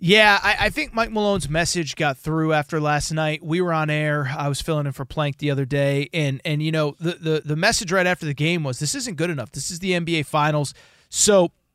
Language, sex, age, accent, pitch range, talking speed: English, male, 30-49, American, 150-195 Hz, 245 wpm